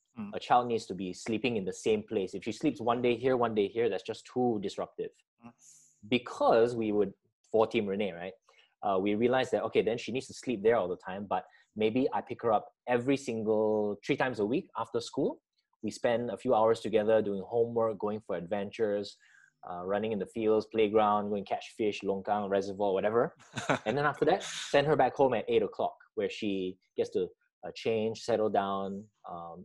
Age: 20-39